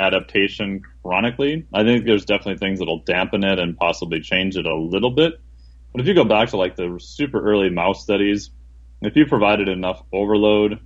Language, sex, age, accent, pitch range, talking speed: English, male, 30-49, American, 90-110 Hz, 190 wpm